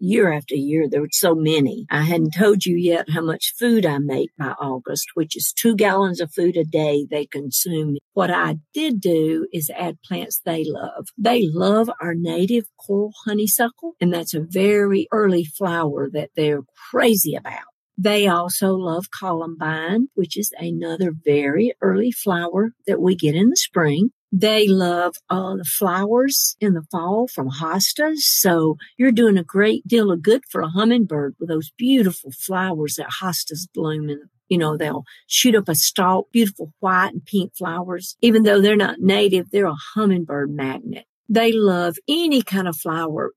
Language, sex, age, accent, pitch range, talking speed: English, female, 50-69, American, 160-220 Hz, 175 wpm